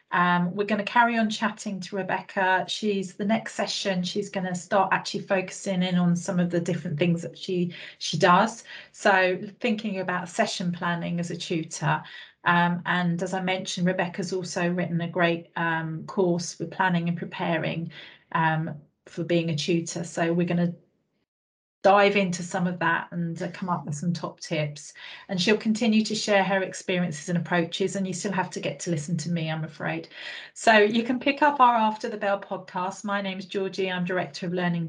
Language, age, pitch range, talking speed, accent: English, 40-59, 175-205 Hz, 200 wpm, British